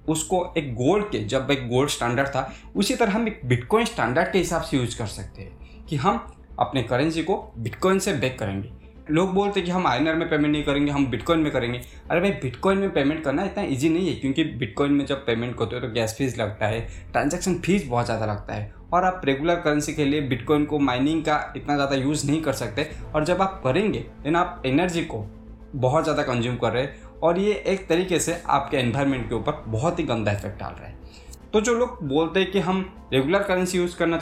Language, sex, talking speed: Hindi, male, 230 wpm